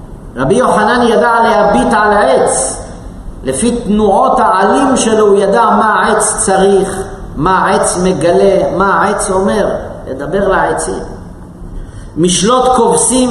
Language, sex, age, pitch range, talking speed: Hebrew, male, 50-69, 165-235 Hz, 115 wpm